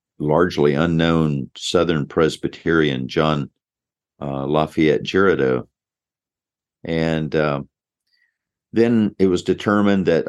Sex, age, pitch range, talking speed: male, 50-69, 75-95 Hz, 85 wpm